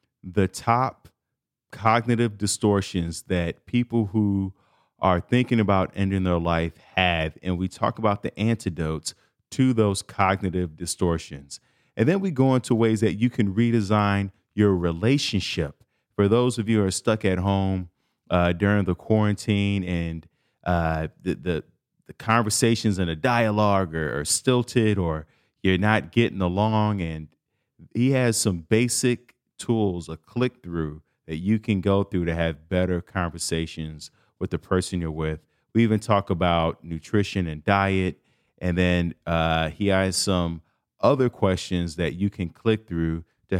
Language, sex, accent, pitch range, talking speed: English, male, American, 85-110 Hz, 150 wpm